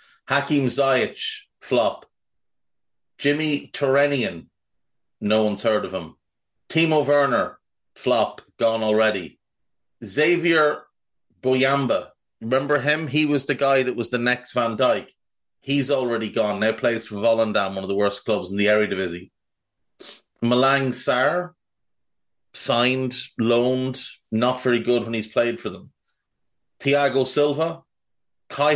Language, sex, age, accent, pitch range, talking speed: English, male, 30-49, Irish, 110-140 Hz, 125 wpm